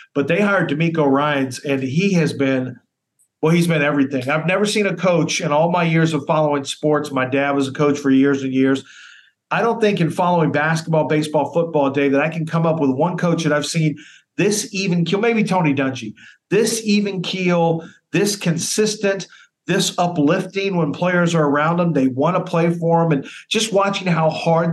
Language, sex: English, male